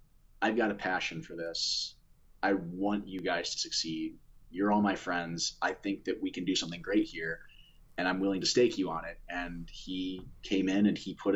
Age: 20-39